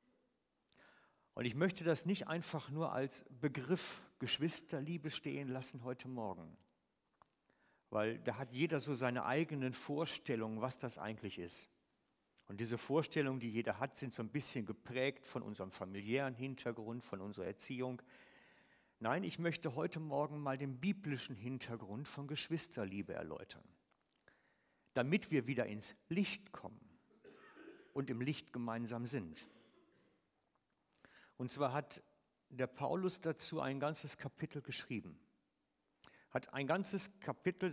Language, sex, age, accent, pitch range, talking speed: German, male, 50-69, German, 120-160 Hz, 130 wpm